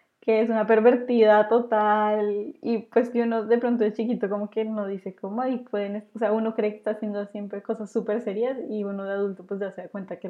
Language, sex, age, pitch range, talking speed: Spanish, female, 10-29, 205-235 Hz, 240 wpm